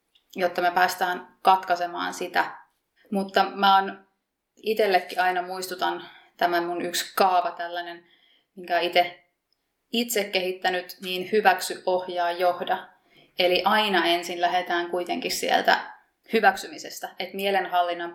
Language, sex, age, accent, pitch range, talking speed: Finnish, female, 30-49, native, 170-190 Hz, 105 wpm